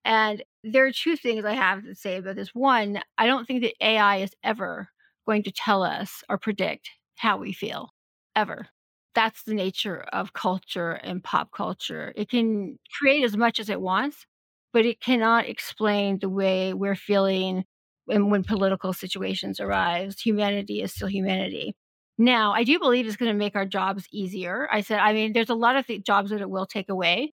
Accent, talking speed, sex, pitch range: American, 190 wpm, female, 195-230 Hz